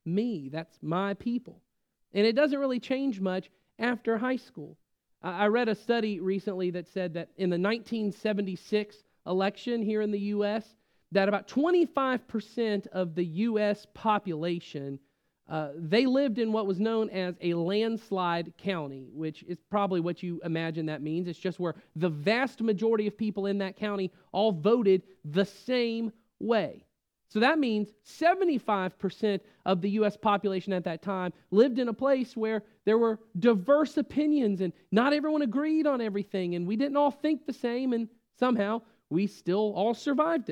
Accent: American